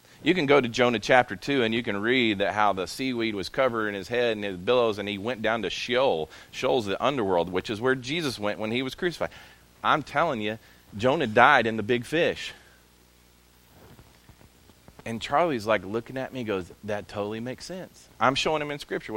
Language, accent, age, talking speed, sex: English, American, 40-59, 210 wpm, male